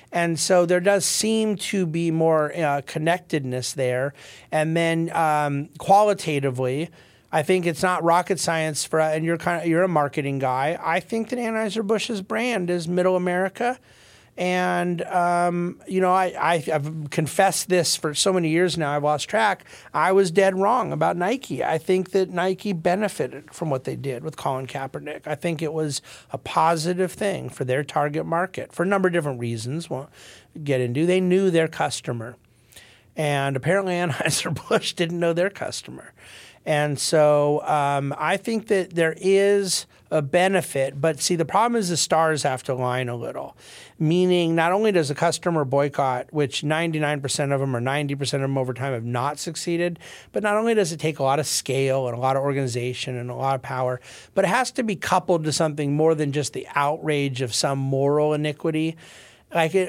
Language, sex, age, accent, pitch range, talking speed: English, male, 40-59, American, 140-180 Hz, 185 wpm